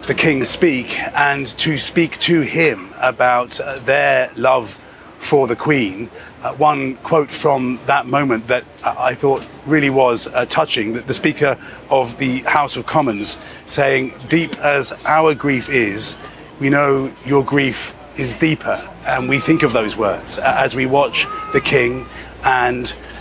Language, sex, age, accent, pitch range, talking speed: English, male, 30-49, British, 125-145 Hz, 160 wpm